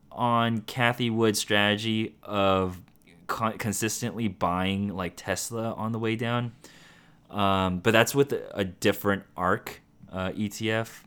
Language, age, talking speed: English, 20-39, 120 wpm